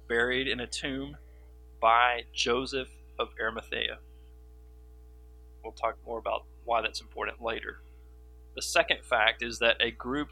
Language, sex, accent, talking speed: English, male, American, 135 wpm